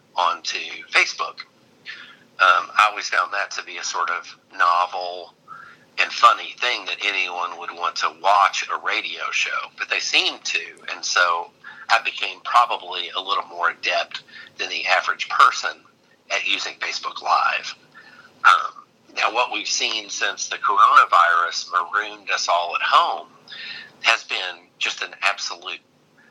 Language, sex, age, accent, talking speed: English, male, 50-69, American, 145 wpm